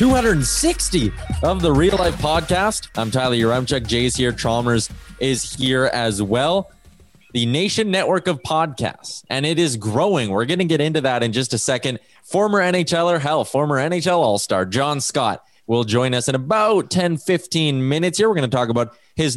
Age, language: 20-39, English